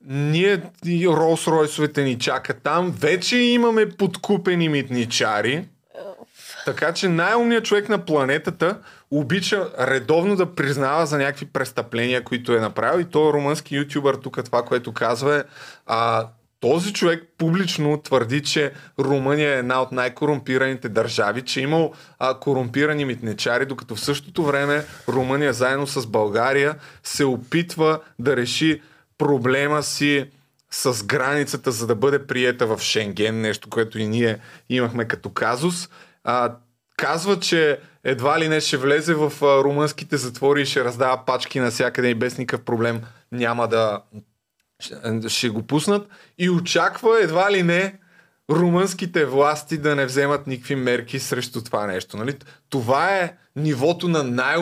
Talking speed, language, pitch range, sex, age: 140 wpm, Bulgarian, 125-165 Hz, male, 30-49